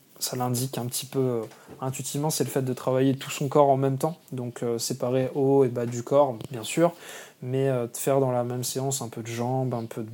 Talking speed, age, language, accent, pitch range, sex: 255 wpm, 20-39, French, French, 125-145 Hz, male